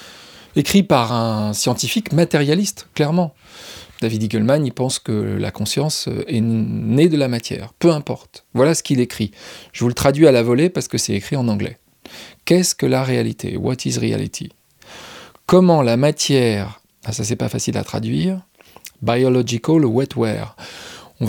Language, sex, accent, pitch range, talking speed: French, male, French, 115-160 Hz, 160 wpm